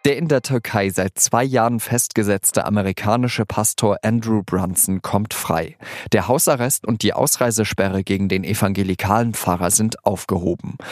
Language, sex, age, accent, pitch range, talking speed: German, male, 40-59, German, 95-120 Hz, 135 wpm